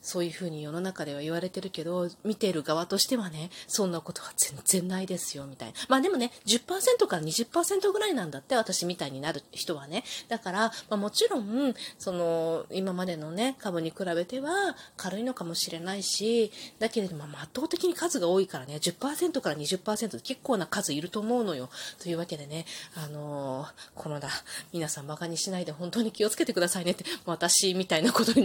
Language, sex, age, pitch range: Japanese, female, 30-49, 165-220 Hz